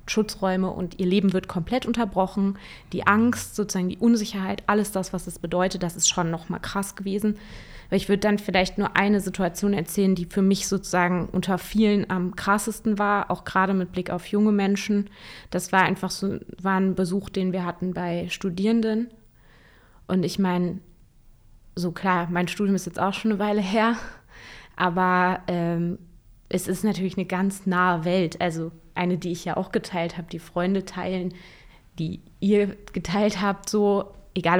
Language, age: German, 20-39